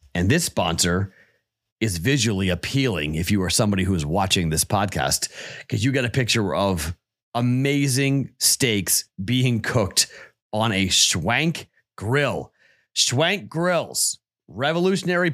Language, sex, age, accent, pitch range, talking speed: English, male, 40-59, American, 100-135 Hz, 125 wpm